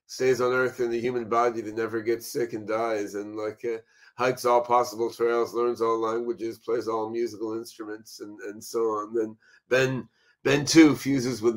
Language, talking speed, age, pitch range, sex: English, 190 wpm, 40-59, 110-125 Hz, male